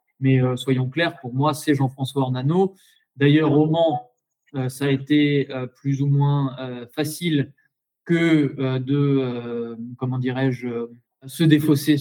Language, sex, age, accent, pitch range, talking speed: French, male, 20-39, French, 130-155 Hz, 150 wpm